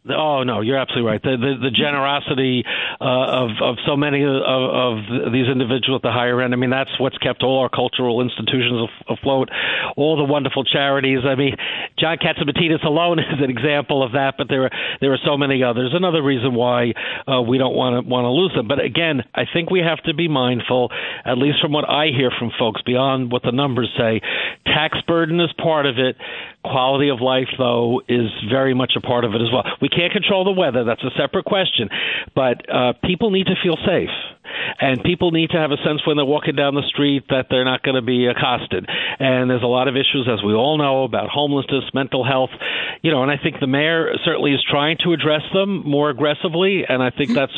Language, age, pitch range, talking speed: English, 50-69, 125-155 Hz, 220 wpm